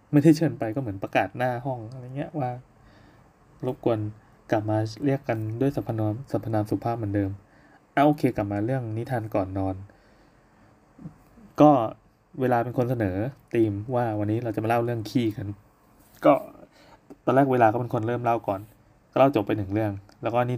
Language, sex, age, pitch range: Thai, male, 20-39, 105-135 Hz